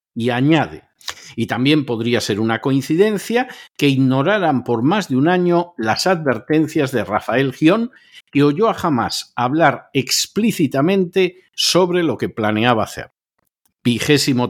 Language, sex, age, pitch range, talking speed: Spanish, male, 50-69, 115-175 Hz, 135 wpm